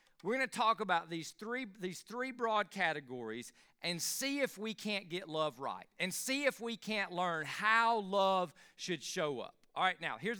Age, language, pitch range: 40-59, English, 155-200 Hz